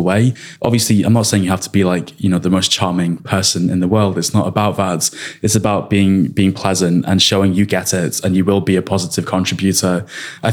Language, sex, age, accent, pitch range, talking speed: English, male, 20-39, British, 95-110 Hz, 235 wpm